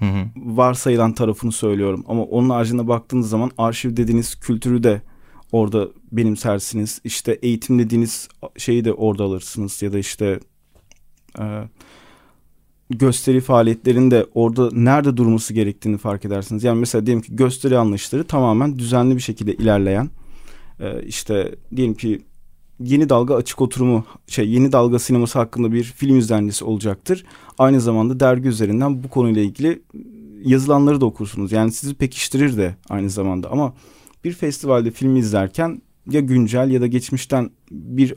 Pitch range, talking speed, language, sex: 110-135 Hz, 140 wpm, Turkish, male